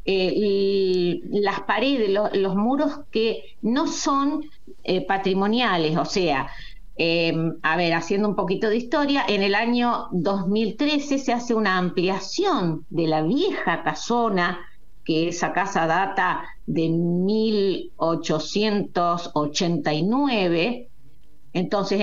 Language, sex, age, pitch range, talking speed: Spanish, female, 50-69, 175-235 Hz, 105 wpm